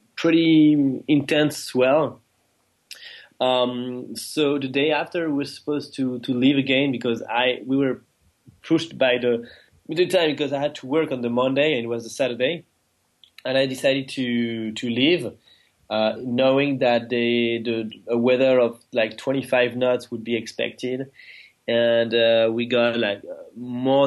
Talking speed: 160 wpm